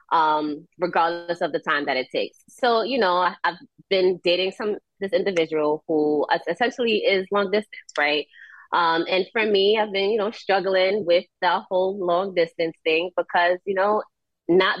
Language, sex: English, female